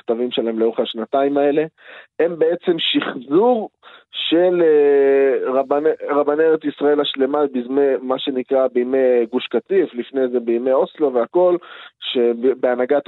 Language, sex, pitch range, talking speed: Hebrew, male, 125-155 Hz, 110 wpm